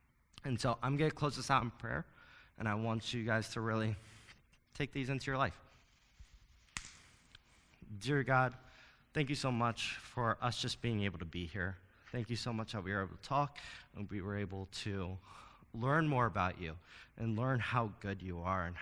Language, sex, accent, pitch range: English, male, American, 105-130 Hz